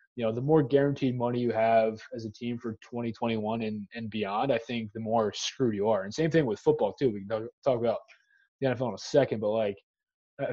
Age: 20-39